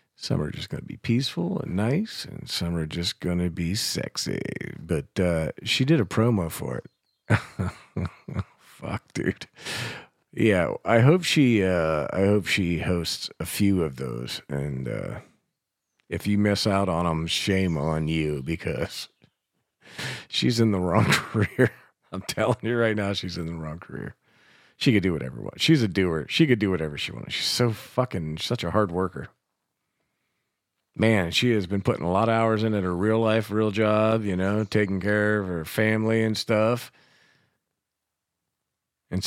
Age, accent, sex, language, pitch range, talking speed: 40-59, American, male, English, 85-110 Hz, 175 wpm